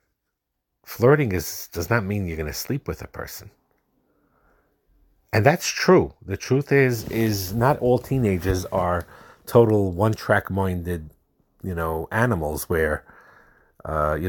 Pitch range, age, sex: 85-115 Hz, 50-69, male